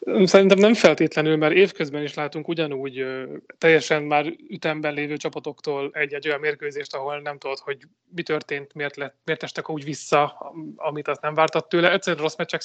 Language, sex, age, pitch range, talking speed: Hungarian, male, 30-49, 145-160 Hz, 170 wpm